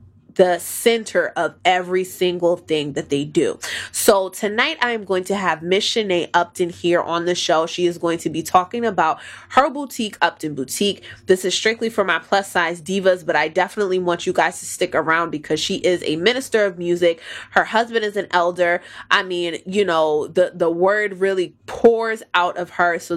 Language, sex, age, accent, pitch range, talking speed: English, female, 20-39, American, 170-195 Hz, 195 wpm